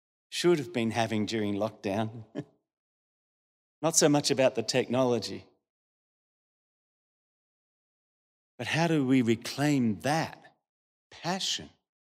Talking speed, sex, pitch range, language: 95 wpm, male, 135-185 Hz, English